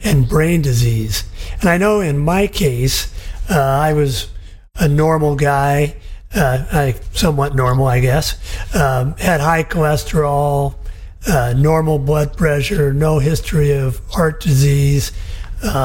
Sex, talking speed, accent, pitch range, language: male, 130 wpm, American, 115-150 Hz, English